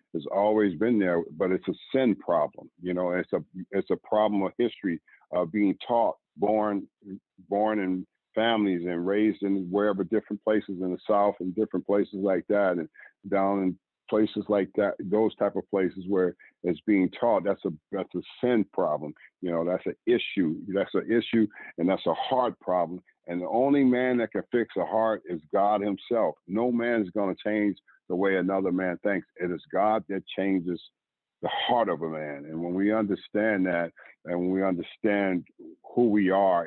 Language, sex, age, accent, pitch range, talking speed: English, male, 50-69, American, 90-105 Hz, 190 wpm